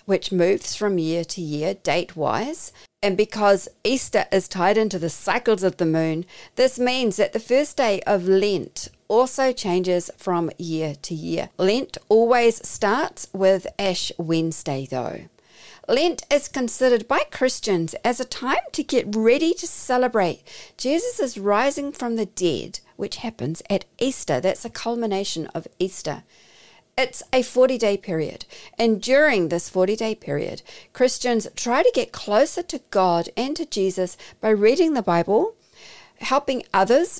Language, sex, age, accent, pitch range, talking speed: English, female, 50-69, Australian, 185-255 Hz, 150 wpm